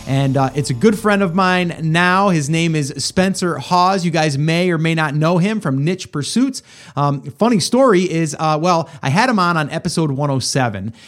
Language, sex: English, male